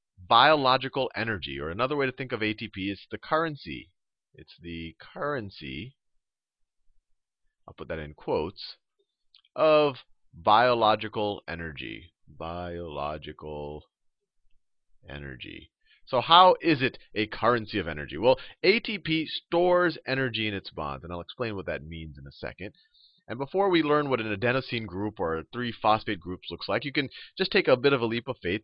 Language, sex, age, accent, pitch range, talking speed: English, male, 30-49, American, 90-150 Hz, 155 wpm